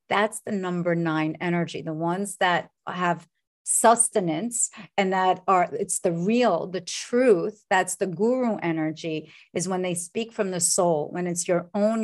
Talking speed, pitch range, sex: 165 wpm, 170-210 Hz, female